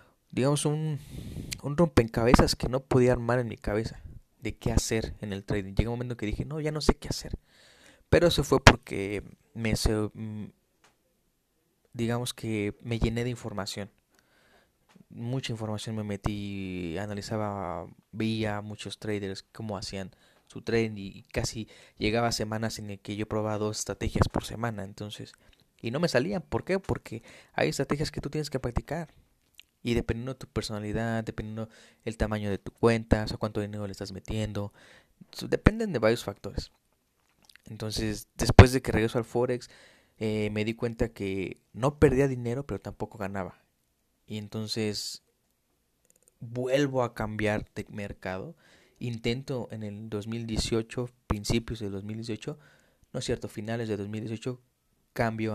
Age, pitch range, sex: 20-39, 105-120 Hz, male